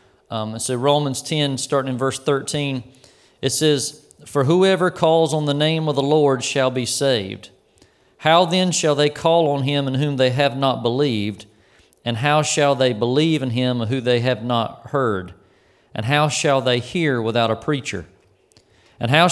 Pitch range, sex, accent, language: 125-150 Hz, male, American, English